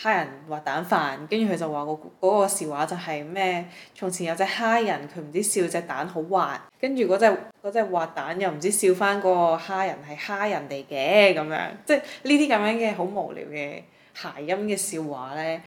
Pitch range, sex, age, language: 155-190 Hz, female, 20-39, Chinese